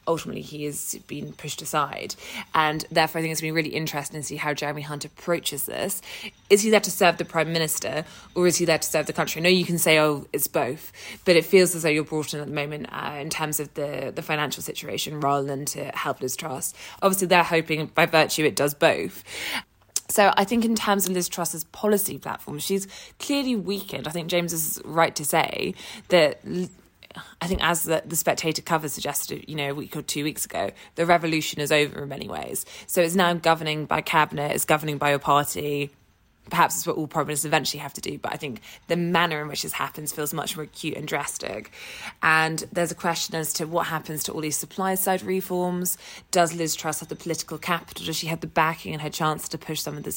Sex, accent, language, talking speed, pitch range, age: female, British, English, 230 wpm, 150-175 Hz, 20-39